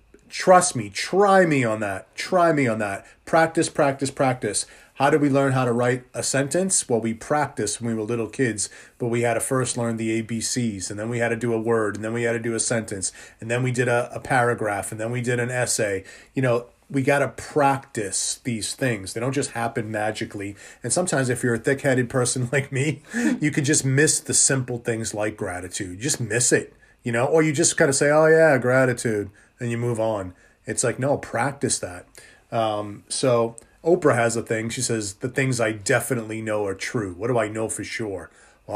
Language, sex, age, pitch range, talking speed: English, male, 30-49, 110-135 Hz, 225 wpm